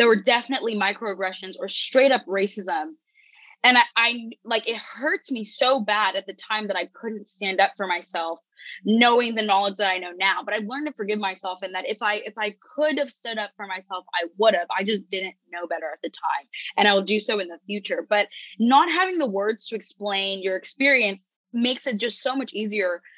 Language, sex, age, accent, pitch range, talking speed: English, female, 20-39, American, 195-250 Hz, 220 wpm